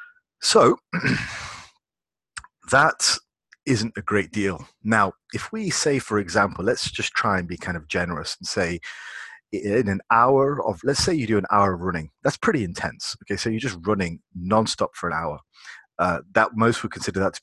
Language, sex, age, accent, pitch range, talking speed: English, male, 30-49, British, 95-115 Hz, 185 wpm